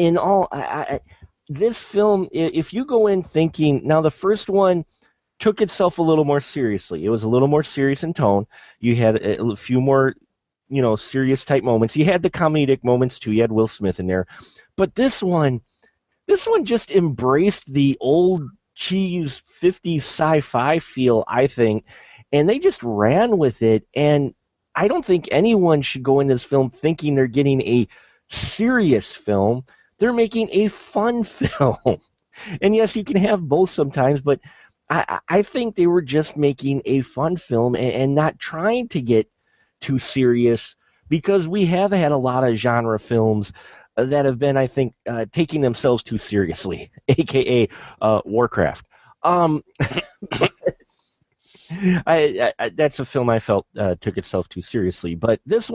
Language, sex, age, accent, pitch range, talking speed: English, male, 30-49, American, 120-180 Hz, 165 wpm